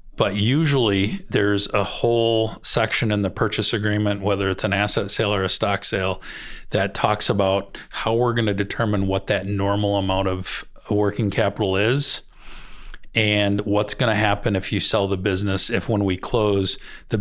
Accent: American